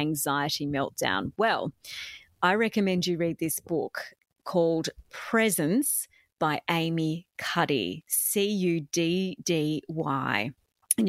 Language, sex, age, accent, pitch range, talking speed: English, female, 30-49, Australian, 160-200 Hz, 85 wpm